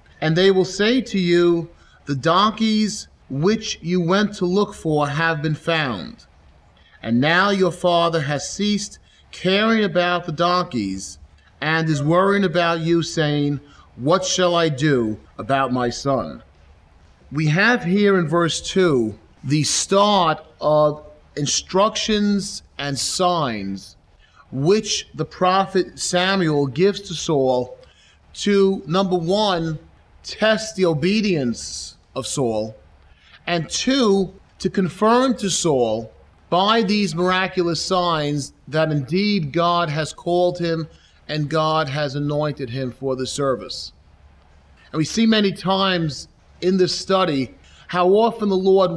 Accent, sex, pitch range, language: American, male, 135-190 Hz, English